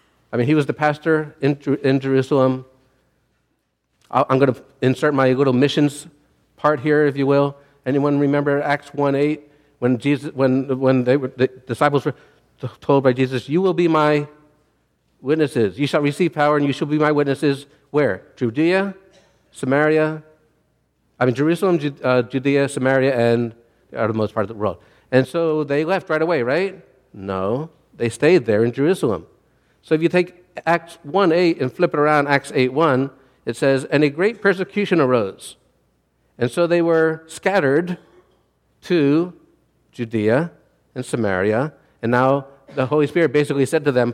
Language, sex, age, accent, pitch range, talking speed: English, male, 50-69, American, 125-155 Hz, 160 wpm